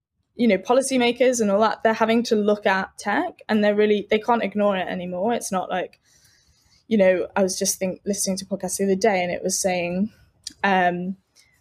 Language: English